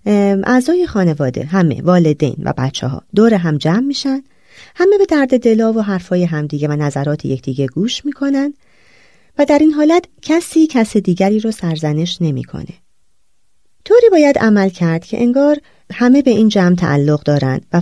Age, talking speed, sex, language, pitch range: 30-49, 155 wpm, female, Persian, 160-250 Hz